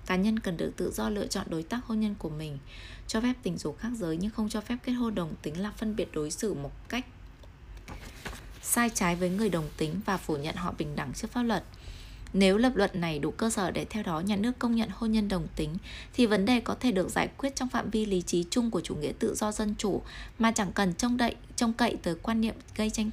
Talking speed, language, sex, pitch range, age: 260 wpm, Vietnamese, female, 170-230 Hz, 20-39